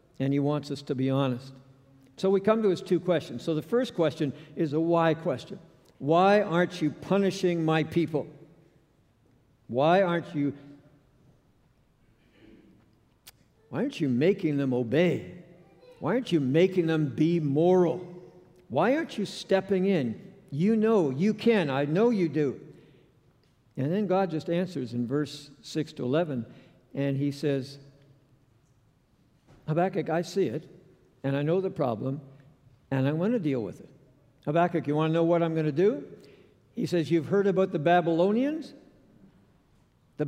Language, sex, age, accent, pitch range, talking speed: English, male, 60-79, American, 140-175 Hz, 150 wpm